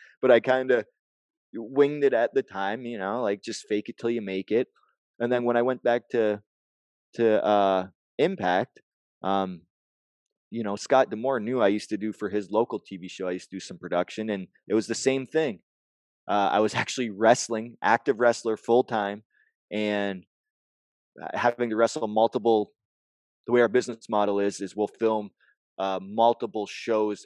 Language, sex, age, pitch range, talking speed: English, male, 20-39, 95-120 Hz, 180 wpm